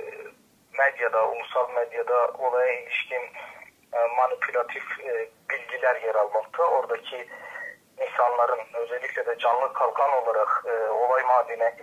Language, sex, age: Turkish, male, 40-59